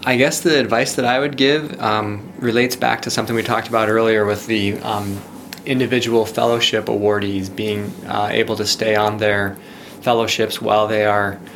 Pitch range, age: 105-120 Hz, 20-39